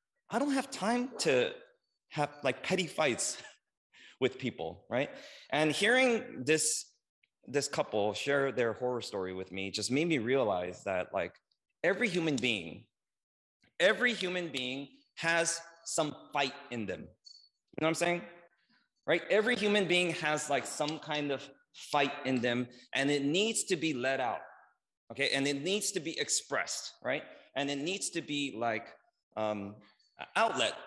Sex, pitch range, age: male, 125-180 Hz, 30-49